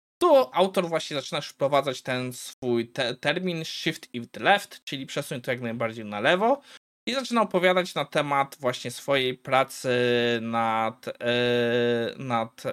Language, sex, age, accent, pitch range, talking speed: Polish, male, 20-39, native, 125-170 Hz, 145 wpm